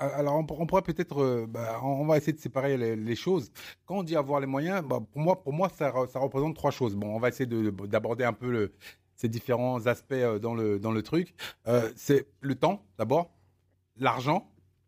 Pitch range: 105-155 Hz